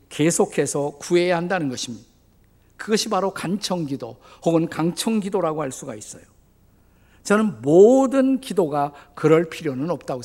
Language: Korean